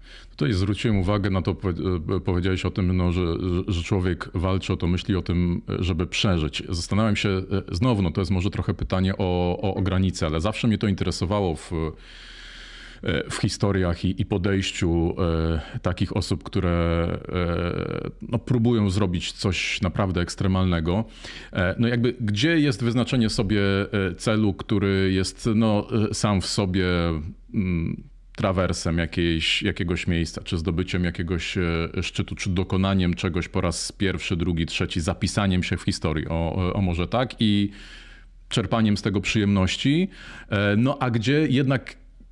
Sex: male